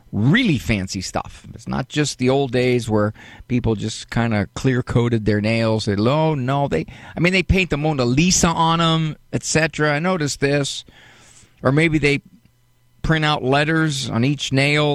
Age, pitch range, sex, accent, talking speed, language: 50-69, 110-150 Hz, male, American, 175 wpm, English